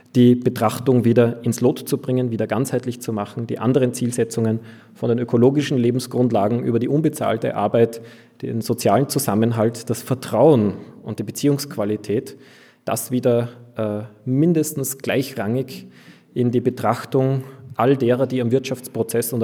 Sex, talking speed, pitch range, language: male, 135 wpm, 115-140 Hz, German